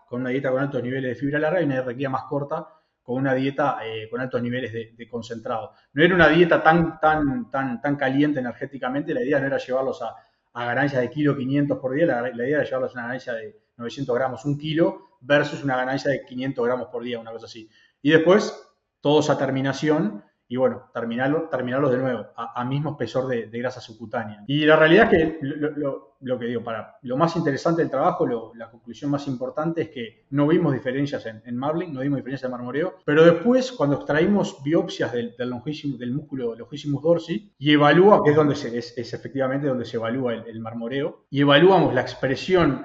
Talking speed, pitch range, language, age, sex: 215 wpm, 125-155 Hz, Spanish, 20-39, male